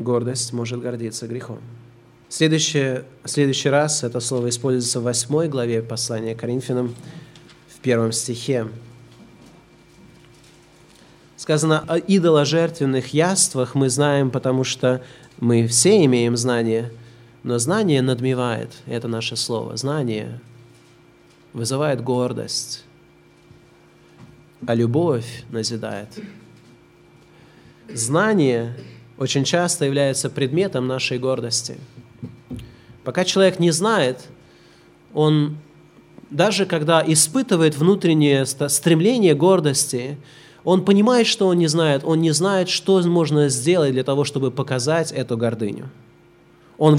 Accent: native